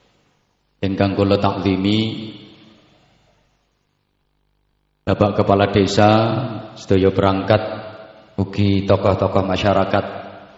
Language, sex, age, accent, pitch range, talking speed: Indonesian, male, 30-49, native, 95-110 Hz, 60 wpm